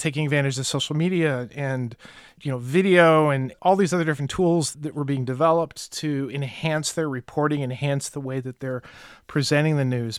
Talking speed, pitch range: 185 wpm, 140-165 Hz